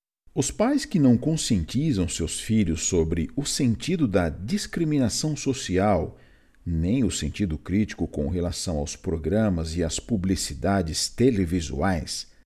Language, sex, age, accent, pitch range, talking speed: Portuguese, male, 50-69, Brazilian, 85-110 Hz, 120 wpm